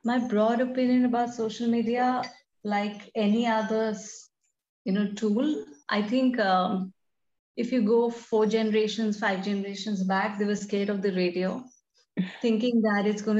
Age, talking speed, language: 30-49, 150 wpm, English